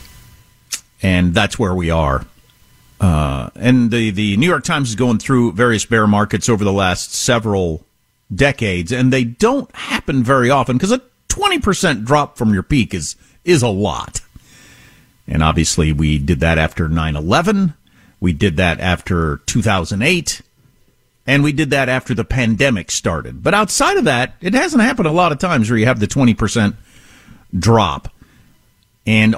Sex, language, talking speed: male, English, 160 wpm